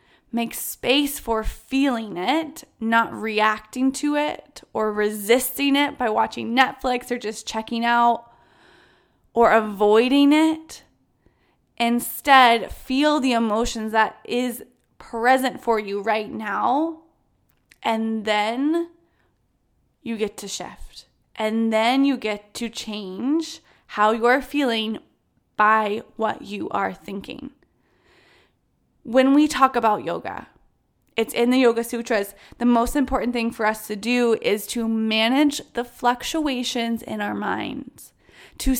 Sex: female